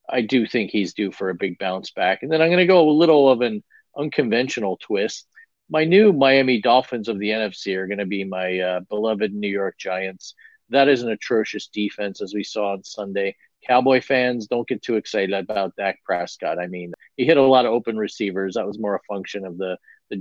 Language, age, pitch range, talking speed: English, 40-59, 100-135 Hz, 225 wpm